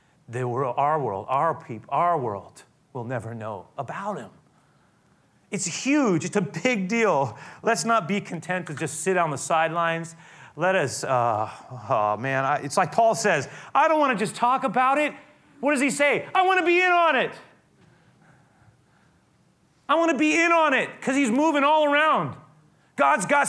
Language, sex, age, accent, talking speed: English, male, 30-49, American, 185 wpm